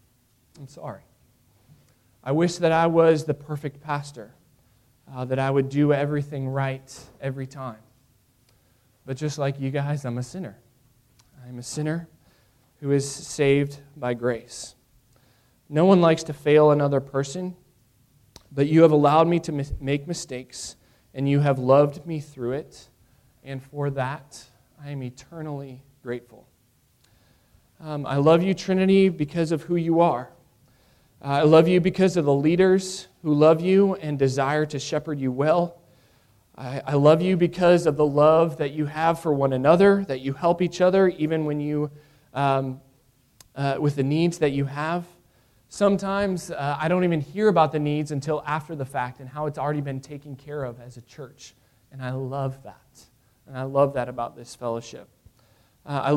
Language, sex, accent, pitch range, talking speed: English, male, American, 130-160 Hz, 170 wpm